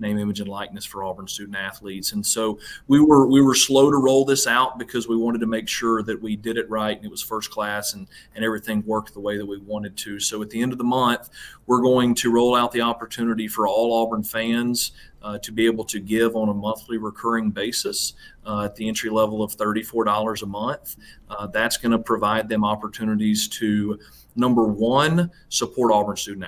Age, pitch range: 30-49, 100-115 Hz